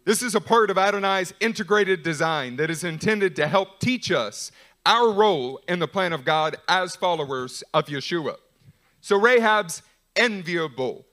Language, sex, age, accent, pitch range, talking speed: English, male, 40-59, American, 180-225 Hz, 155 wpm